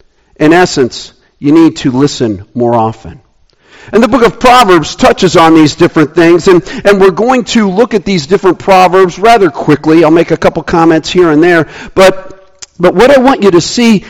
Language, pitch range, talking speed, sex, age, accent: English, 140-190 Hz, 195 wpm, male, 50-69, American